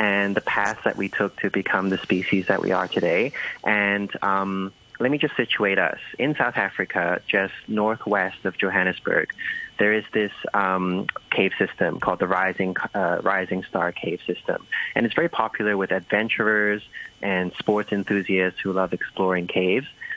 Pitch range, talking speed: 95-105 Hz, 165 wpm